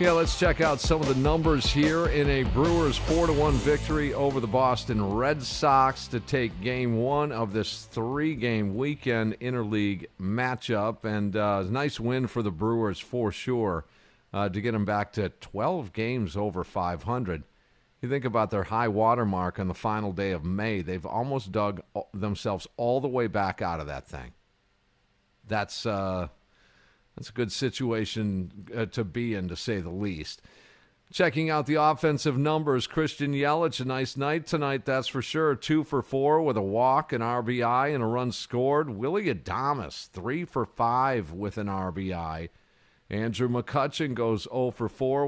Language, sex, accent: English, male, American